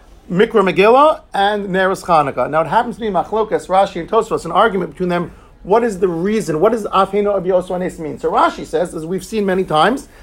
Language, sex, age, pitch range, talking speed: English, male, 50-69, 180-235 Hz, 210 wpm